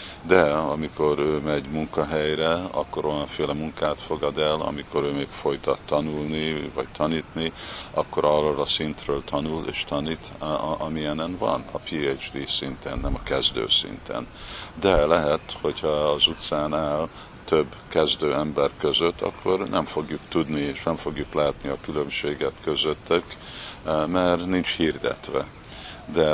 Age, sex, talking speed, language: 50-69, male, 130 wpm, Hungarian